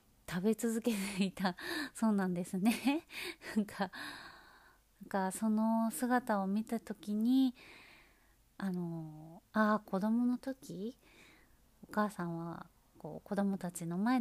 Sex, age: female, 30-49